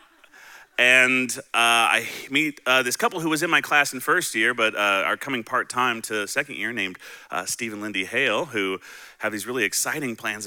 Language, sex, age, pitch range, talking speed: English, male, 30-49, 105-135 Hz, 200 wpm